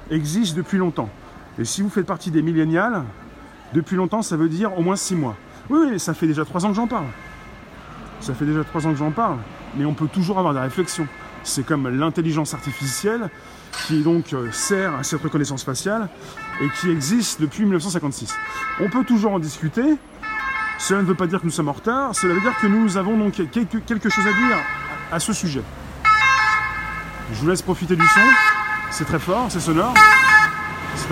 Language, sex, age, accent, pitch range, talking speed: French, male, 30-49, French, 150-205 Hz, 195 wpm